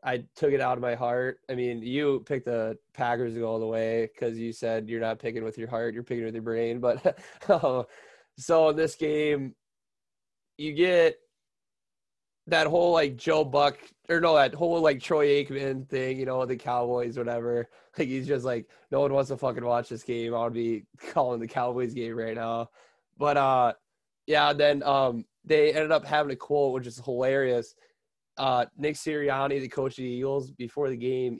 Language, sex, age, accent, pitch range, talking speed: English, male, 20-39, American, 120-140 Hz, 195 wpm